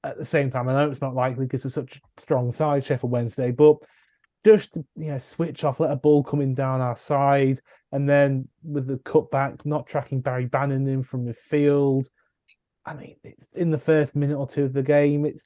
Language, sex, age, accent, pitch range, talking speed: English, male, 20-39, British, 125-150 Hz, 220 wpm